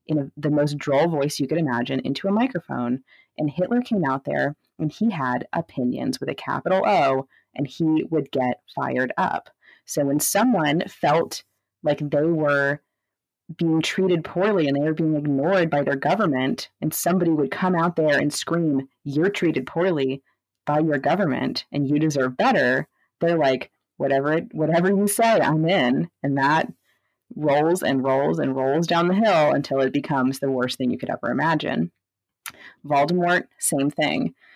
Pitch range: 135-170 Hz